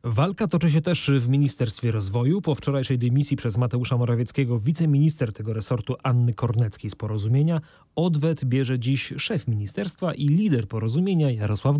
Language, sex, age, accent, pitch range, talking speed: Polish, male, 30-49, native, 120-145 Hz, 145 wpm